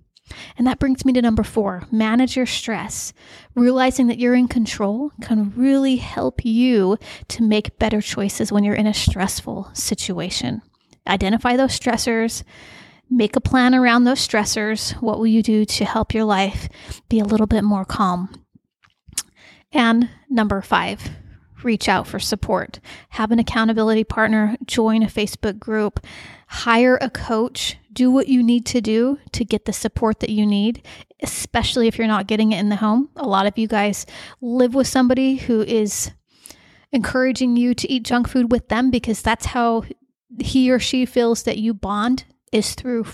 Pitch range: 220-250 Hz